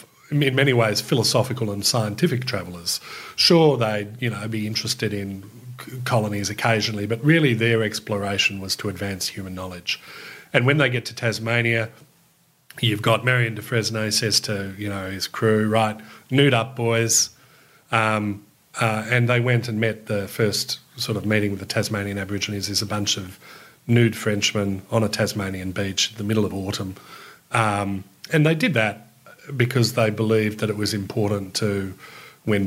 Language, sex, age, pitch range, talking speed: English, male, 40-59, 100-120 Hz, 170 wpm